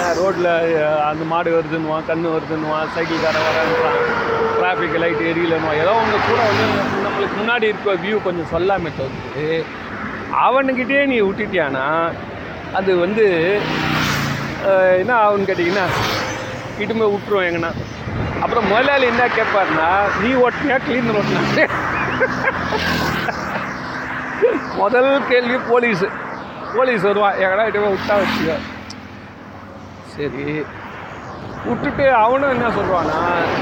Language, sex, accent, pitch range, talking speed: Tamil, male, native, 160-225 Hz, 95 wpm